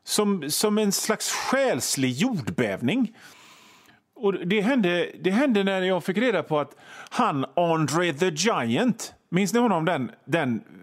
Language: Swedish